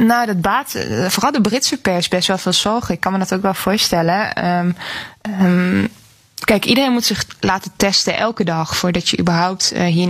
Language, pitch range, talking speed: Dutch, 180-205 Hz, 190 wpm